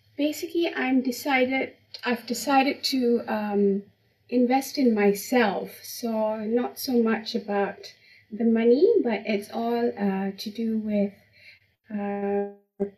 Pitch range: 195-230 Hz